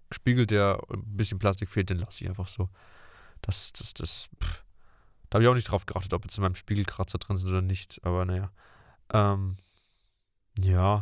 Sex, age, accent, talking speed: male, 20-39, German, 190 wpm